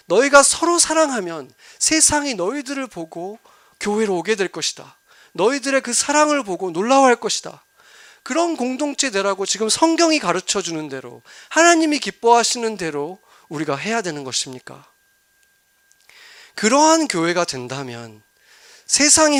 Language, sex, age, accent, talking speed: English, male, 40-59, Korean, 105 wpm